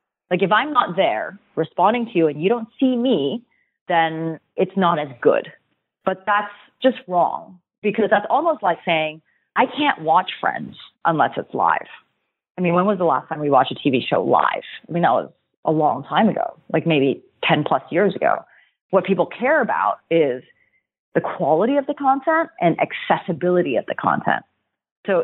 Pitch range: 160-230 Hz